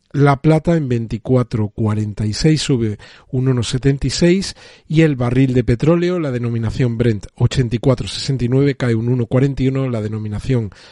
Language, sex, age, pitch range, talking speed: Spanish, male, 40-59, 120-140 Hz, 115 wpm